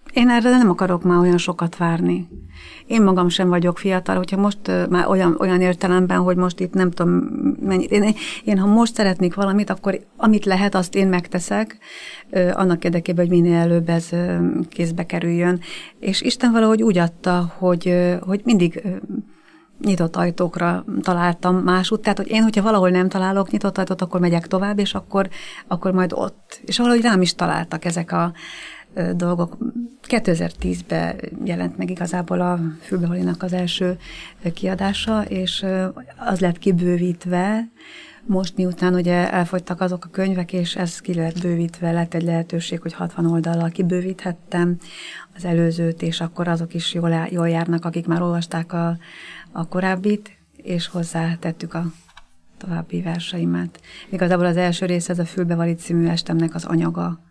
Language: Hungarian